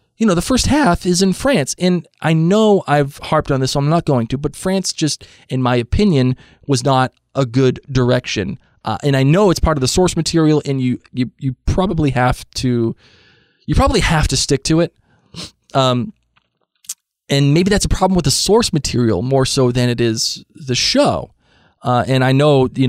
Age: 20-39